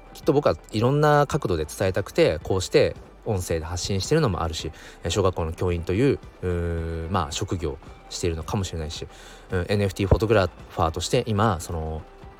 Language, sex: Japanese, male